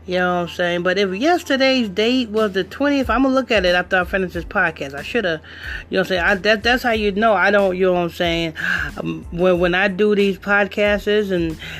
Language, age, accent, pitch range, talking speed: English, 30-49, American, 170-210 Hz, 260 wpm